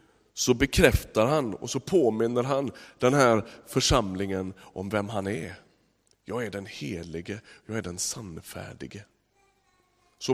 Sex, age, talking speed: male, 30-49, 135 wpm